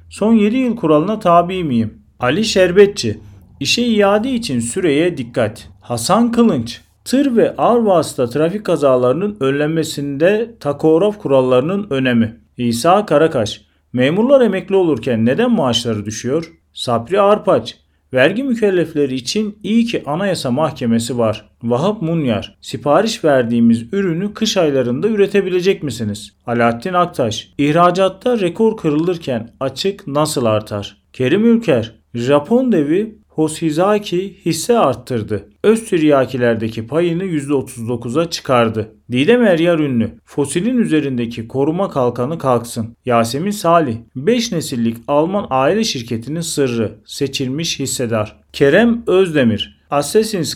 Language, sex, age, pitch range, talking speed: Turkish, male, 40-59, 120-190 Hz, 105 wpm